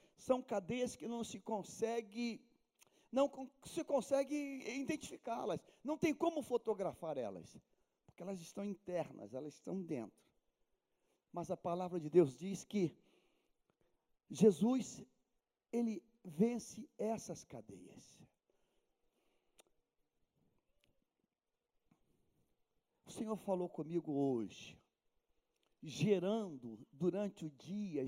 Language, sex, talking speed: Portuguese, male, 90 wpm